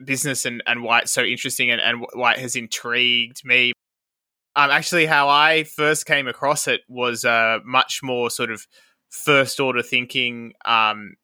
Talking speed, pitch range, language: 165 wpm, 120-145 Hz, English